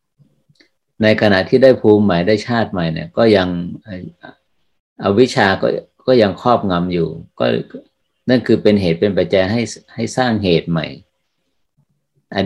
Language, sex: Thai, male